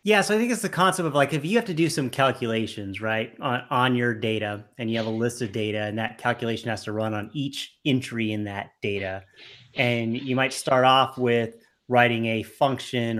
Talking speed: 225 wpm